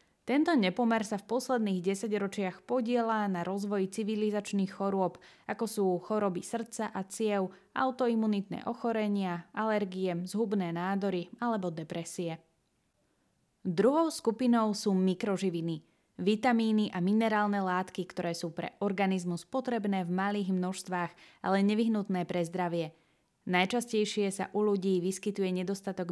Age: 20-39